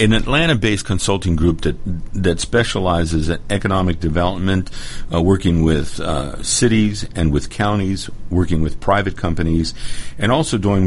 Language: English